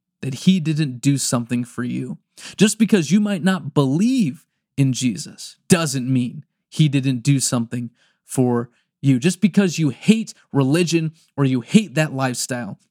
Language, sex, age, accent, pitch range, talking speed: English, male, 20-39, American, 135-185 Hz, 155 wpm